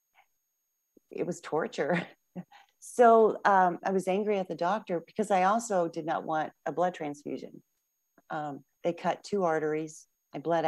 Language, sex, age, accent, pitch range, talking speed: English, female, 40-59, American, 145-180 Hz, 150 wpm